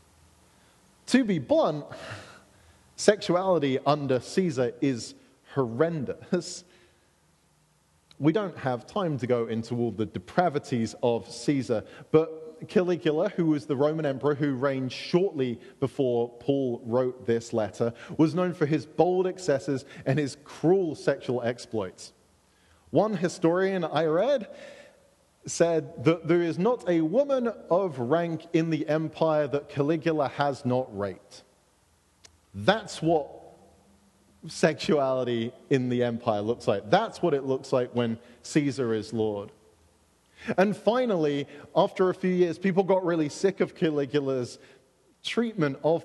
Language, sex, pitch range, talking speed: English, male, 120-170 Hz, 130 wpm